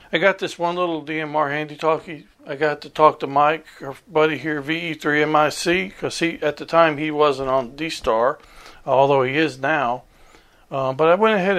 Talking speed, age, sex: 185 wpm, 50-69, male